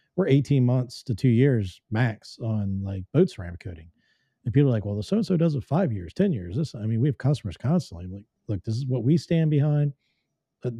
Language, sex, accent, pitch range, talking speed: English, male, American, 115-165 Hz, 235 wpm